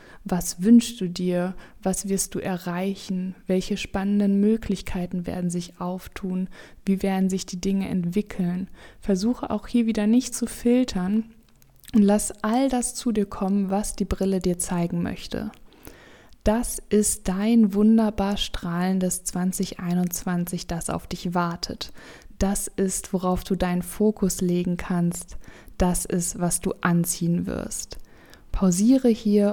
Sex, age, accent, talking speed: female, 20-39, German, 135 wpm